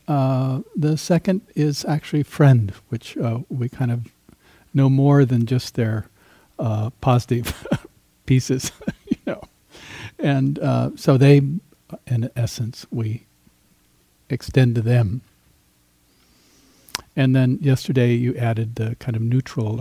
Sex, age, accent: male, 60-79, American